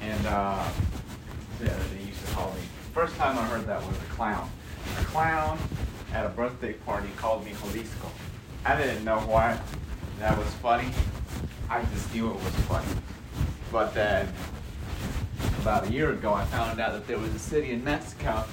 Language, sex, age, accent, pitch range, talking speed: English, male, 30-49, American, 95-120 Hz, 170 wpm